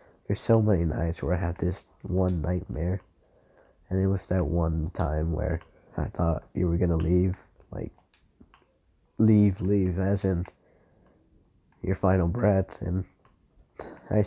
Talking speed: 145 wpm